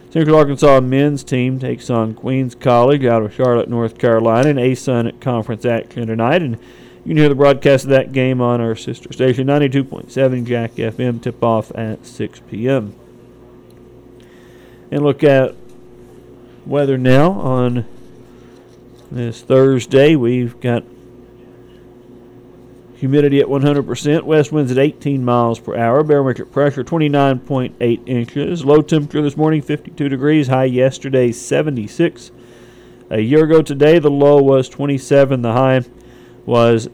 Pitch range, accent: 120-145 Hz, American